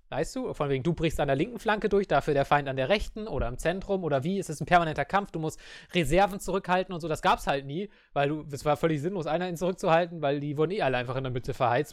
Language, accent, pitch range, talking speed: English, German, 145-190 Hz, 280 wpm